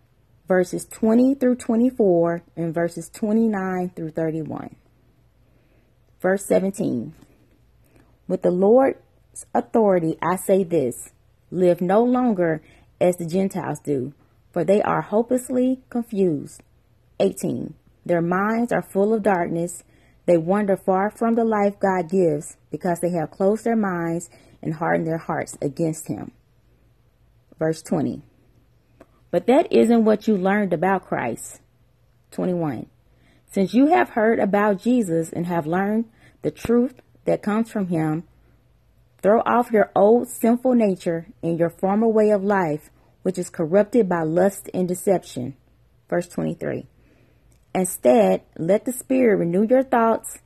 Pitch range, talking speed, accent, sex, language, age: 160-215 Hz, 130 wpm, American, female, English, 30-49